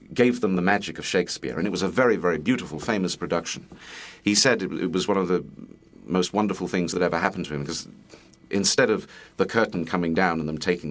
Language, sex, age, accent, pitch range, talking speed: English, male, 40-59, British, 80-105 Hz, 225 wpm